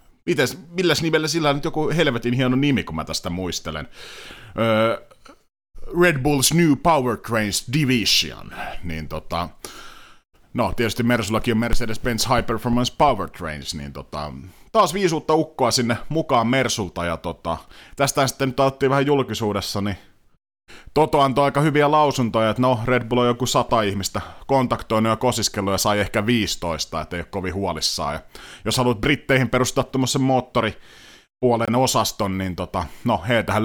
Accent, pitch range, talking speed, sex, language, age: native, 105-140 Hz, 150 wpm, male, Finnish, 30-49